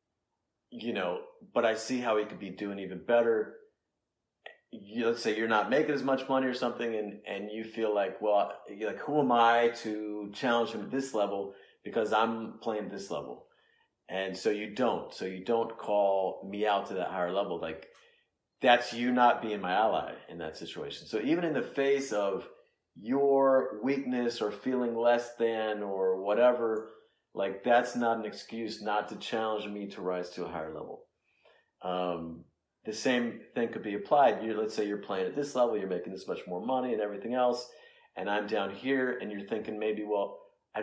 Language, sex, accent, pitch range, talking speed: English, male, American, 100-125 Hz, 195 wpm